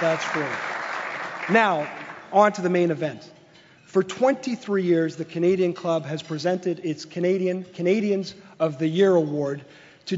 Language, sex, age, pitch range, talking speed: English, male, 40-59, 165-195 Hz, 140 wpm